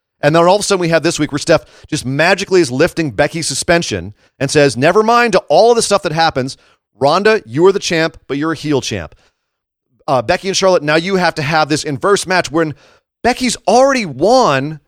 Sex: male